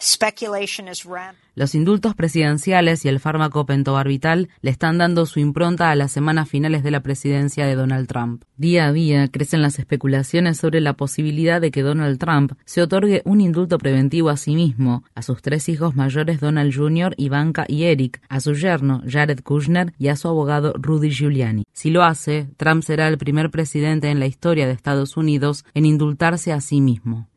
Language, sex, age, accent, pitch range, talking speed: Spanish, female, 20-39, Argentinian, 145-165 Hz, 180 wpm